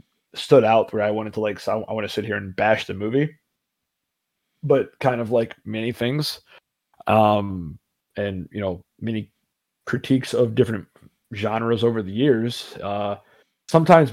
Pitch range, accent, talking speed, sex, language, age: 100-120 Hz, American, 155 wpm, male, English, 20-39